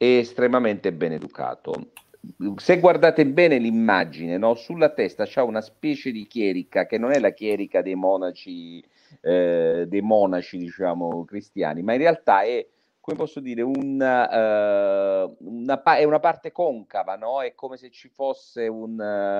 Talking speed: 150 wpm